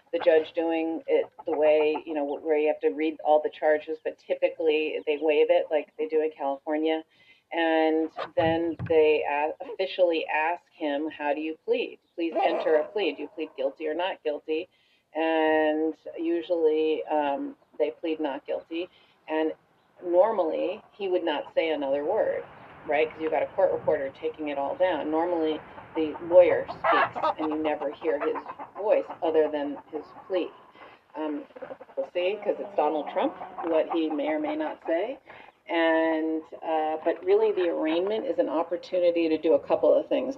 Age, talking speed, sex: 40-59, 170 wpm, female